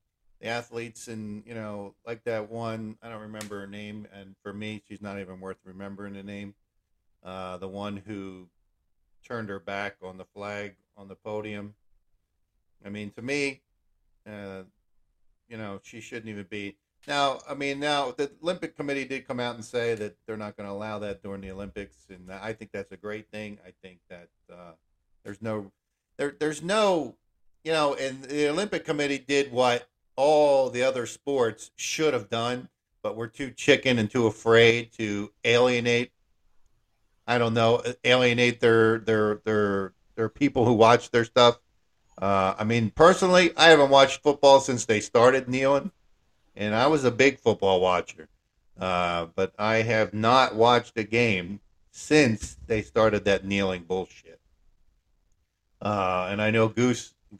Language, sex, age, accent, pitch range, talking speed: English, male, 50-69, American, 100-120 Hz, 165 wpm